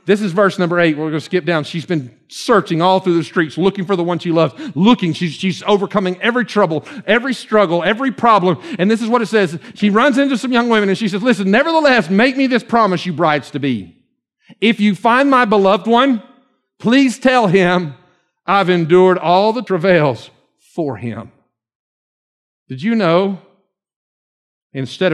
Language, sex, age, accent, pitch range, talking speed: English, male, 50-69, American, 140-210 Hz, 180 wpm